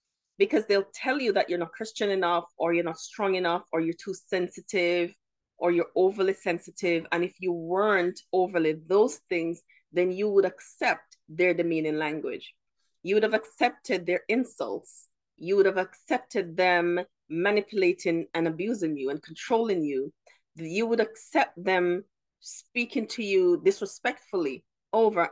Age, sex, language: 30-49, female, English